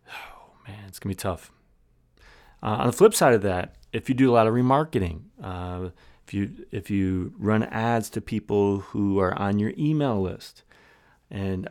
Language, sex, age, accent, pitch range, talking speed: English, male, 30-49, American, 90-130 Hz, 180 wpm